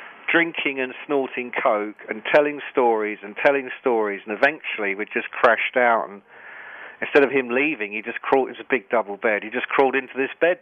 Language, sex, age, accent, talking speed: Swedish, male, 40-59, British, 200 wpm